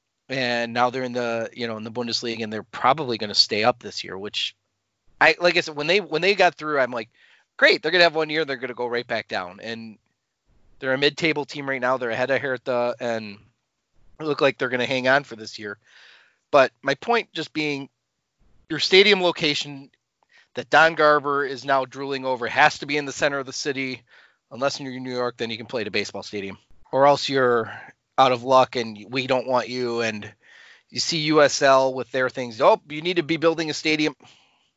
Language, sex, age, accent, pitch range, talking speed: English, male, 30-49, American, 120-150 Hz, 230 wpm